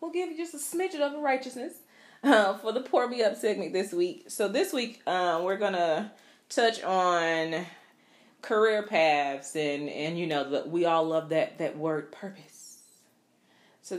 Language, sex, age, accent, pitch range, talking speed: English, female, 30-49, American, 150-205 Hz, 175 wpm